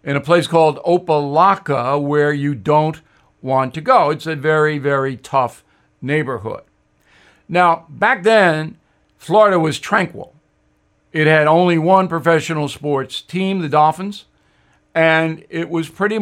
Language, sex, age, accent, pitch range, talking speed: English, male, 60-79, American, 145-180 Hz, 135 wpm